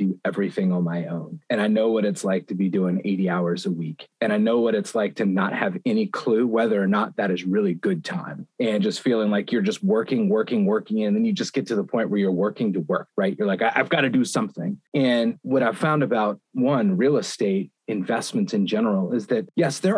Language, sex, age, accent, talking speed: English, male, 30-49, American, 250 wpm